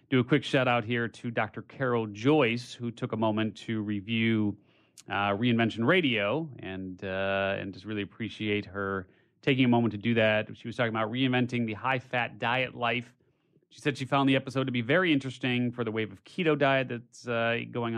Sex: male